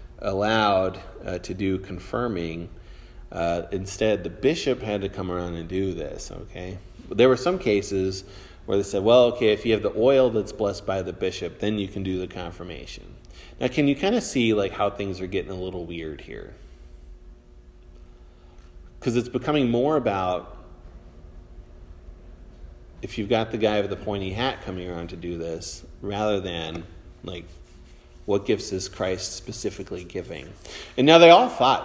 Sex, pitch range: male, 85-105 Hz